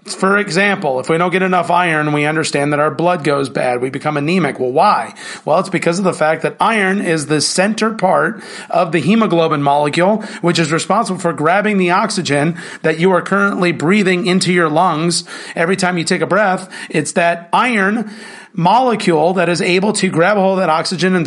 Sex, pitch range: male, 155-185 Hz